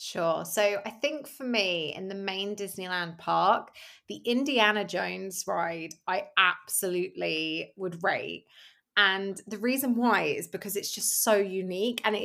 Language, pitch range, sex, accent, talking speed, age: English, 175-220 Hz, female, British, 150 wpm, 20-39